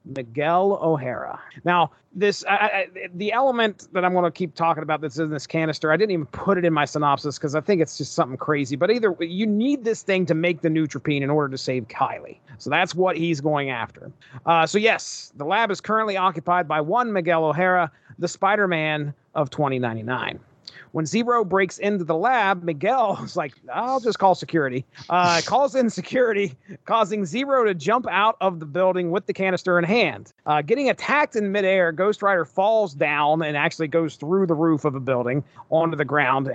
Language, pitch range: English, 150-200 Hz